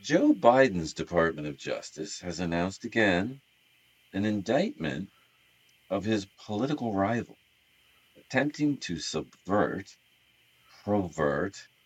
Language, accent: English, American